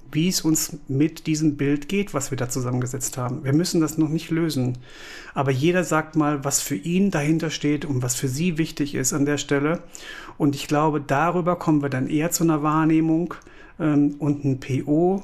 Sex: male